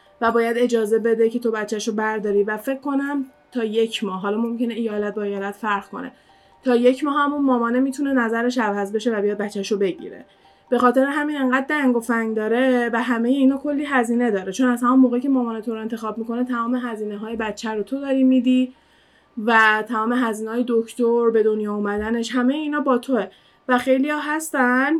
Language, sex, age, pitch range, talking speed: Persian, female, 20-39, 215-255 Hz, 195 wpm